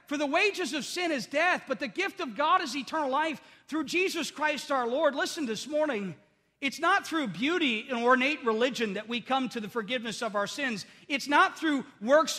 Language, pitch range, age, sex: English, 215-280 Hz, 40-59, male